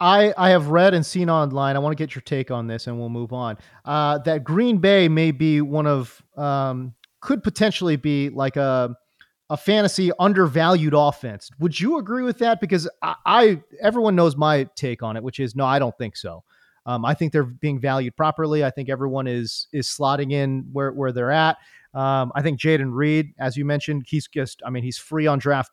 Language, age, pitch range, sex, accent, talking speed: English, 30-49, 135-175 Hz, male, American, 215 wpm